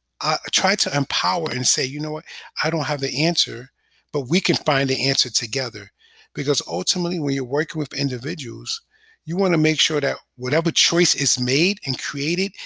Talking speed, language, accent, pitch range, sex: 190 wpm, English, American, 135-180 Hz, male